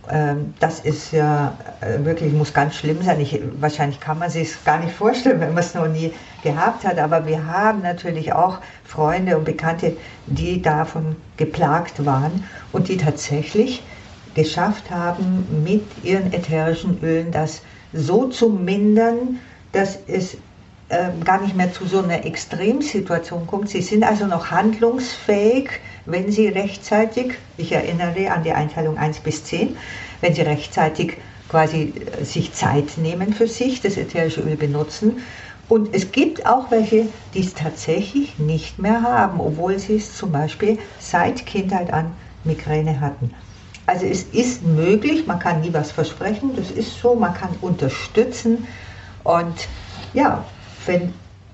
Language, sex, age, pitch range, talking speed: German, female, 50-69, 155-200 Hz, 150 wpm